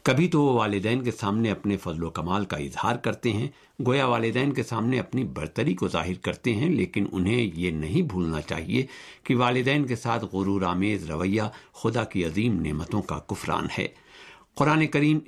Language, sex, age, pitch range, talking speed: Urdu, male, 60-79, 95-125 Hz, 180 wpm